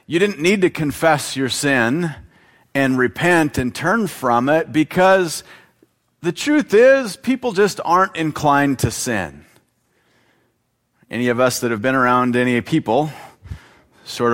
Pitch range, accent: 115-150 Hz, American